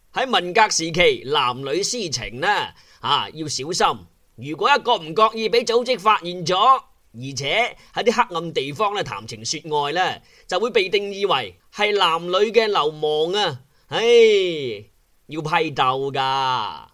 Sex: male